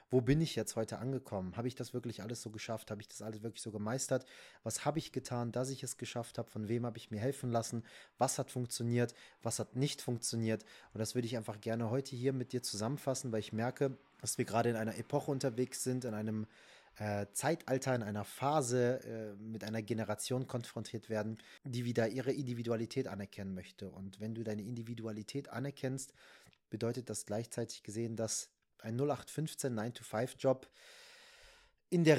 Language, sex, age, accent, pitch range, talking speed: German, male, 30-49, German, 110-130 Hz, 185 wpm